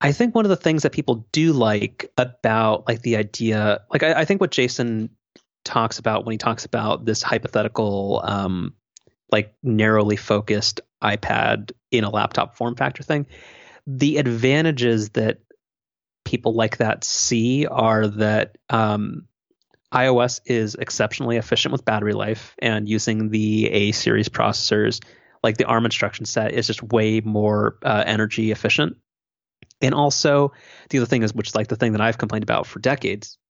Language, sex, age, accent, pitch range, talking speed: English, male, 30-49, American, 105-125 Hz, 165 wpm